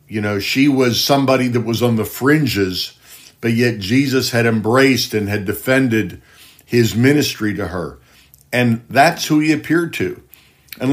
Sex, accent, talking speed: male, American, 160 wpm